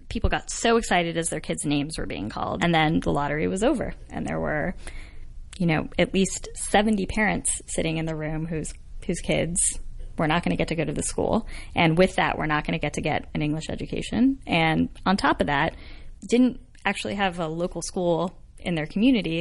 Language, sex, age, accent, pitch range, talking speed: English, female, 10-29, American, 160-185 Hz, 215 wpm